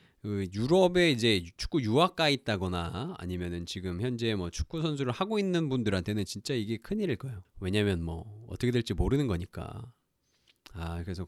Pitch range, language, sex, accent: 100-155 Hz, Korean, male, native